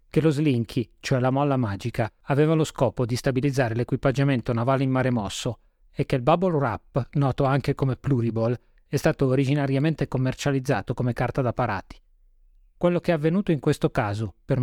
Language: Italian